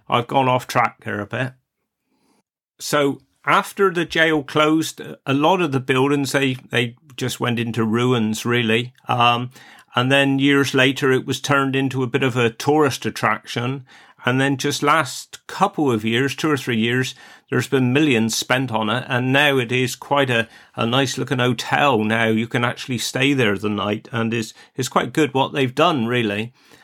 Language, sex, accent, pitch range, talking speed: English, male, British, 120-140 Hz, 185 wpm